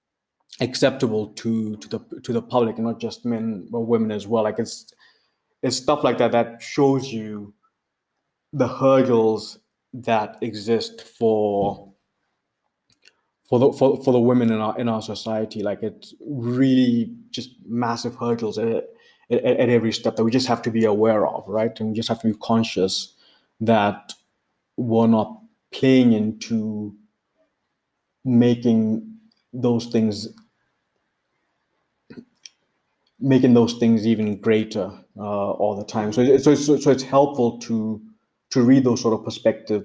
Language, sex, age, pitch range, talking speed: English, male, 20-39, 110-125 Hz, 145 wpm